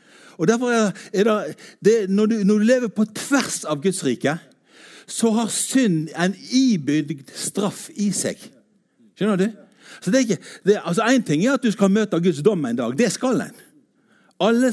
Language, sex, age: English, male, 60-79